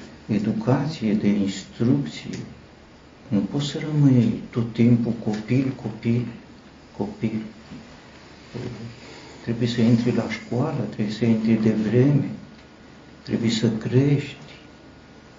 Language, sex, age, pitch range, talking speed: Romanian, male, 60-79, 110-140 Hz, 95 wpm